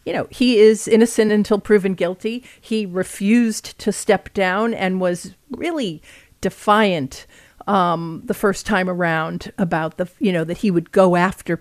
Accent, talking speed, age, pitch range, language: American, 160 wpm, 50-69, 175-215 Hz, English